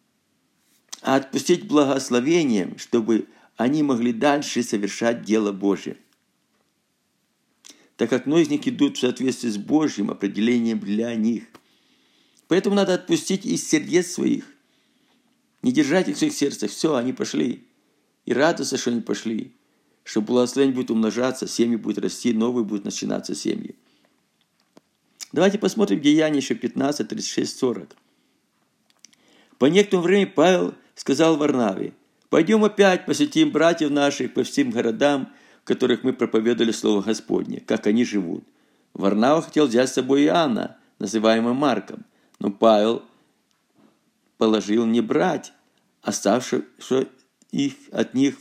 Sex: male